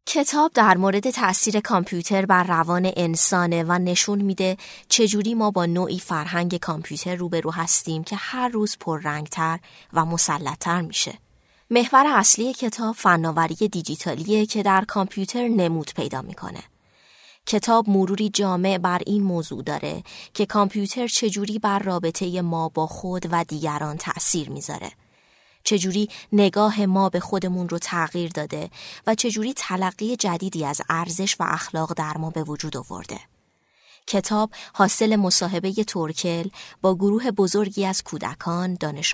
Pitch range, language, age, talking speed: 165-205 Hz, Persian, 20-39, 135 wpm